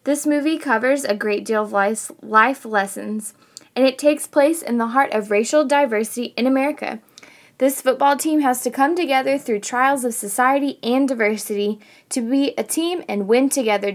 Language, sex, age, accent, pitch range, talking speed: English, female, 20-39, American, 210-270 Hz, 175 wpm